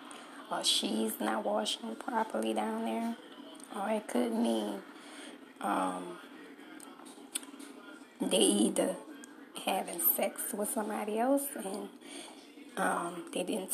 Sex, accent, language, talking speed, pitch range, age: female, American, English, 100 wpm, 190-295 Hz, 10-29